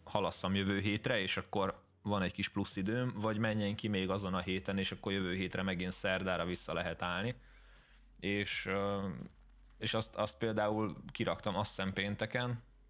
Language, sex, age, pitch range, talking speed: Hungarian, male, 20-39, 95-110 Hz, 160 wpm